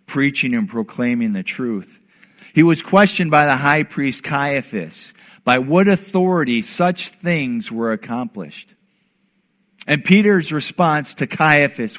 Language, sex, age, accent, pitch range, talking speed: English, male, 50-69, American, 150-210 Hz, 125 wpm